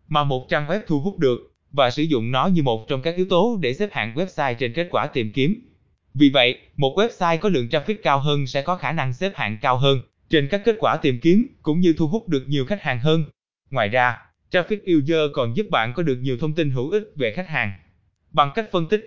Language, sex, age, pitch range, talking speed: Vietnamese, male, 20-39, 125-175 Hz, 250 wpm